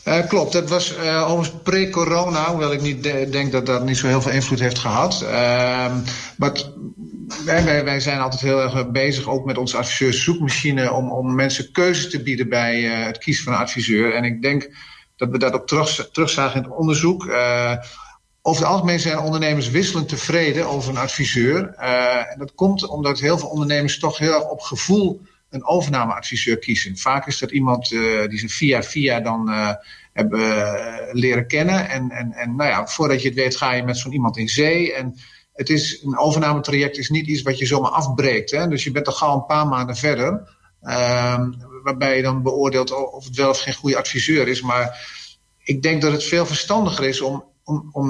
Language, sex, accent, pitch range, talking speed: Dutch, male, Dutch, 125-155 Hz, 205 wpm